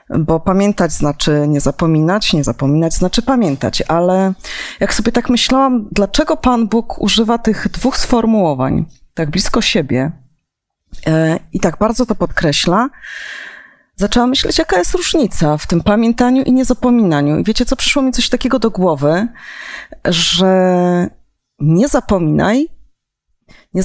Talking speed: 130 wpm